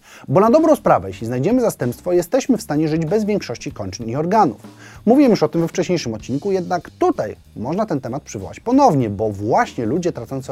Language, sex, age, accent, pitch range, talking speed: Polish, male, 30-49, native, 115-180 Hz, 195 wpm